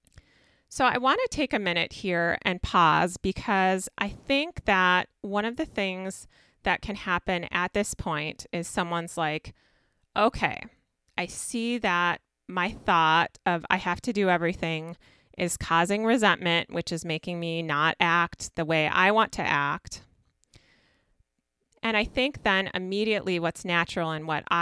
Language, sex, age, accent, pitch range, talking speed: English, female, 30-49, American, 170-215 Hz, 155 wpm